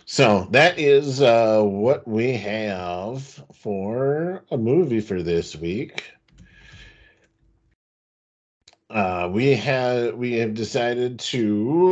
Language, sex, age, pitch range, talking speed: English, male, 50-69, 90-125 Hz, 100 wpm